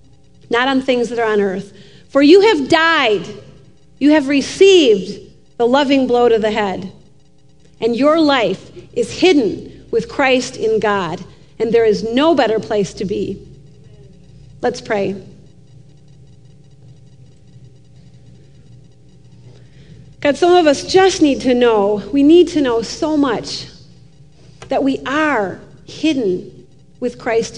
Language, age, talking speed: English, 40-59, 130 wpm